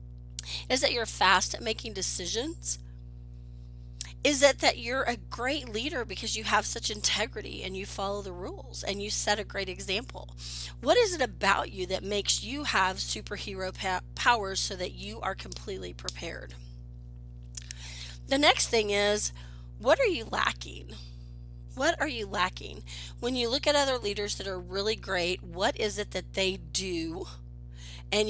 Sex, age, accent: female, 30-49, American